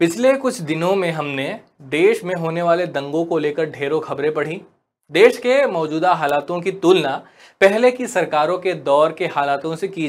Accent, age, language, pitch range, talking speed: native, 30-49, Hindi, 145-185 Hz, 180 wpm